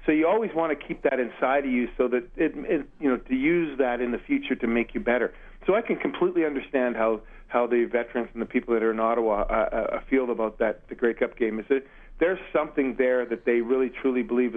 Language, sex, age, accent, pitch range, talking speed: English, male, 40-59, American, 120-155 Hz, 250 wpm